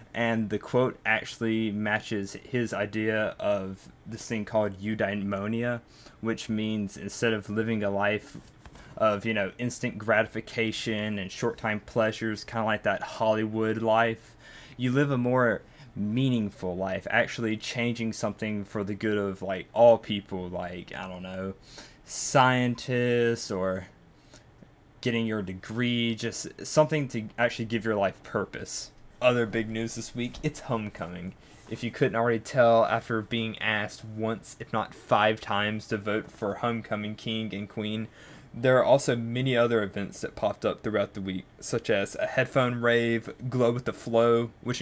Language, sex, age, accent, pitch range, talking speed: English, male, 10-29, American, 105-120 Hz, 155 wpm